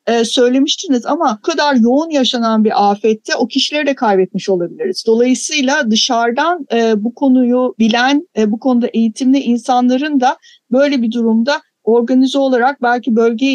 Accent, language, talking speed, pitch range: native, Turkish, 145 wpm, 225-270 Hz